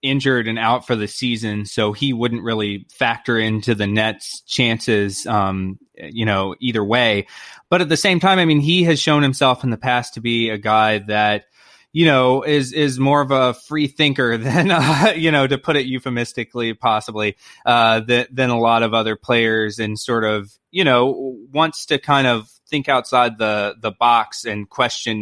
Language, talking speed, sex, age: English, 195 wpm, male, 20-39